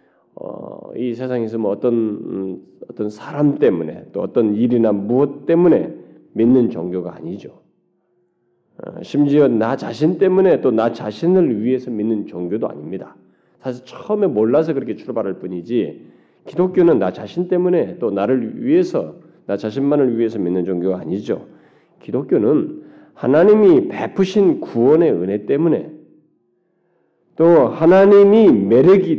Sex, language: male, Korean